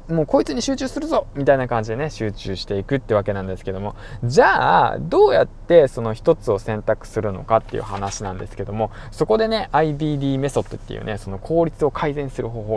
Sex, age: male, 20-39